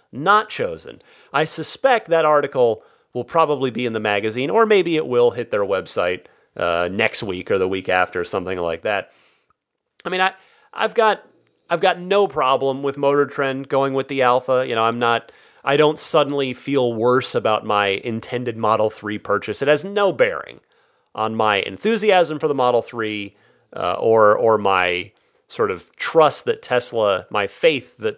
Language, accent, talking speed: English, American, 175 wpm